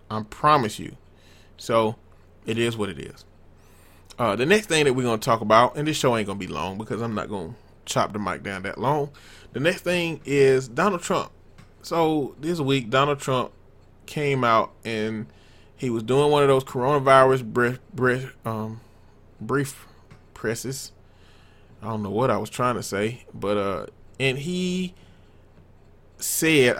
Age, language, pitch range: 20-39, English, 105-130 Hz